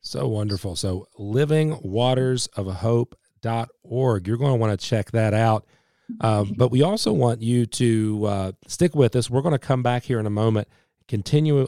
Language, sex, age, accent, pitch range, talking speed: English, male, 40-59, American, 100-125 Hz, 170 wpm